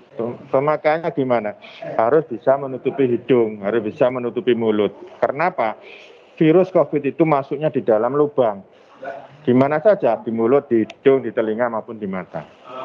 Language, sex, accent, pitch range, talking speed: Indonesian, male, native, 115-145 Hz, 145 wpm